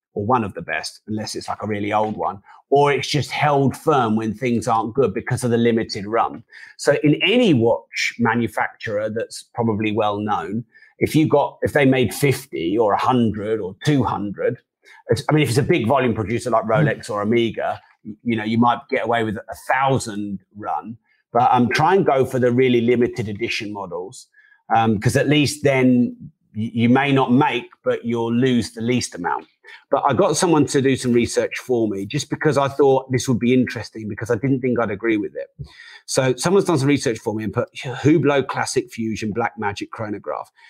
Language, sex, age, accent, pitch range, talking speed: English, male, 30-49, British, 110-145 Hz, 200 wpm